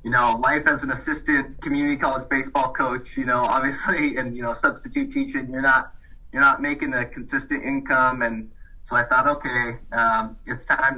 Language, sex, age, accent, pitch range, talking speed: English, male, 20-39, American, 115-135 Hz, 185 wpm